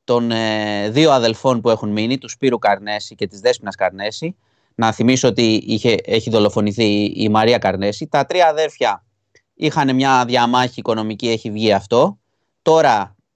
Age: 30-49